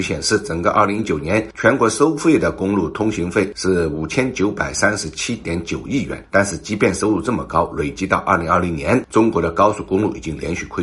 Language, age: Chinese, 60-79